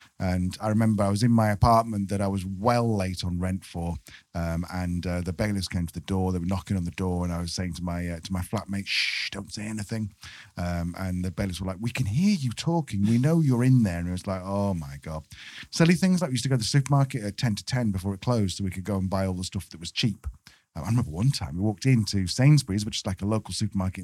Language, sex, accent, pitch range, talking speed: English, male, British, 95-130 Hz, 280 wpm